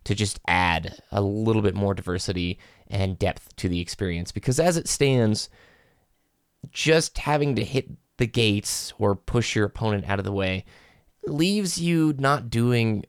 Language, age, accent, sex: English, 20-39, American, male